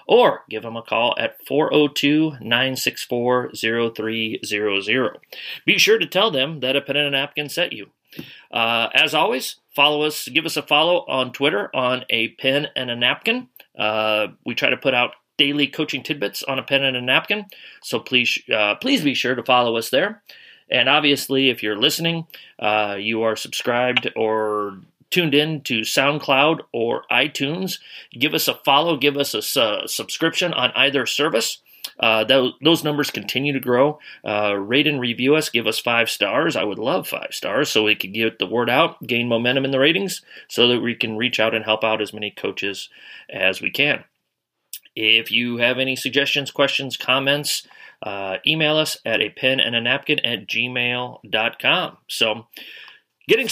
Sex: male